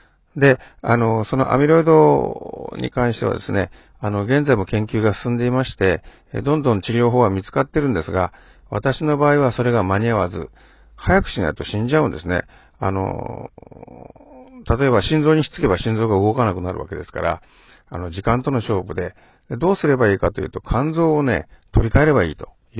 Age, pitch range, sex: 50-69, 95-140 Hz, male